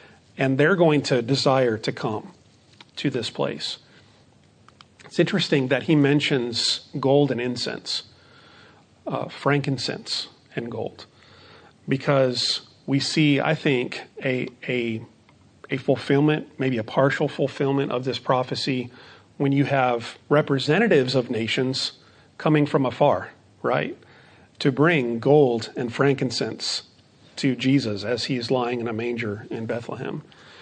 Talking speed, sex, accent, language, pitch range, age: 125 wpm, male, American, English, 120-145 Hz, 40-59